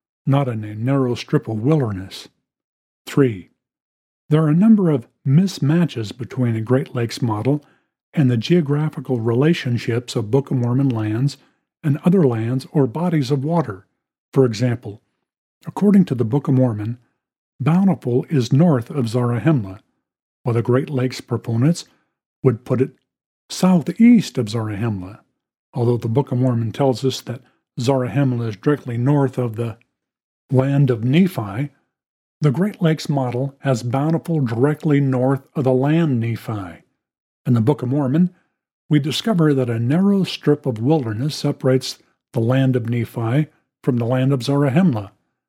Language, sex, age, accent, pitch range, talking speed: English, male, 50-69, American, 120-150 Hz, 145 wpm